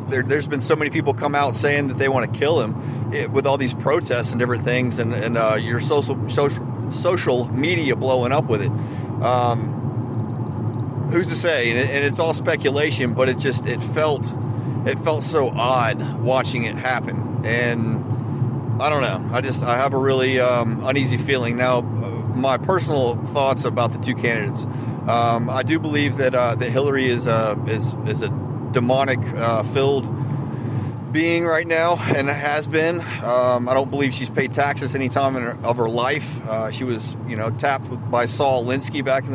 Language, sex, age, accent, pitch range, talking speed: English, male, 40-59, American, 120-135 Hz, 185 wpm